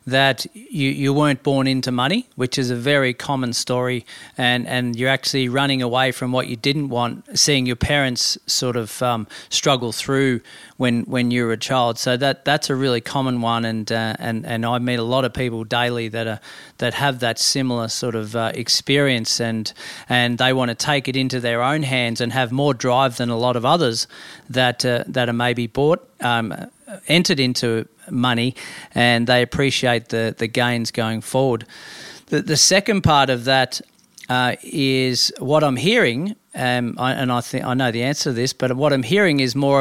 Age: 40-59